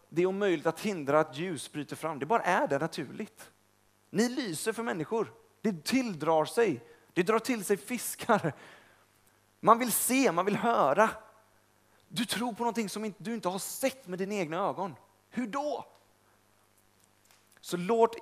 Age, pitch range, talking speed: 30-49, 145-210 Hz, 160 wpm